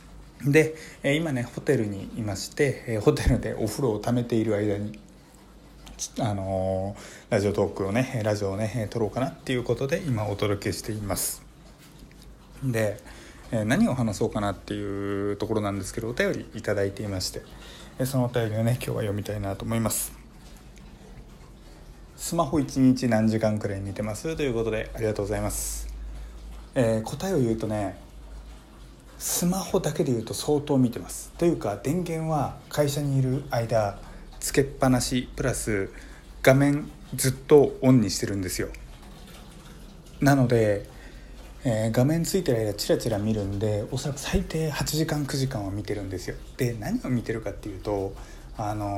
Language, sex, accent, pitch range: Japanese, male, native, 100-135 Hz